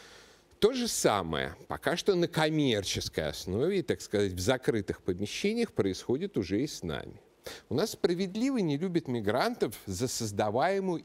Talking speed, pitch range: 140 wpm, 110-175 Hz